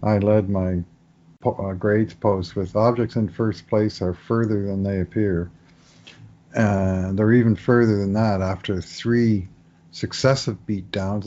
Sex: male